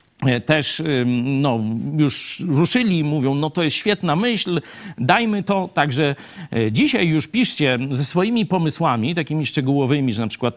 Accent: native